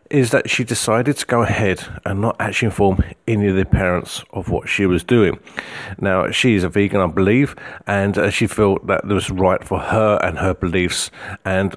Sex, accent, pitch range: male, British, 95-115 Hz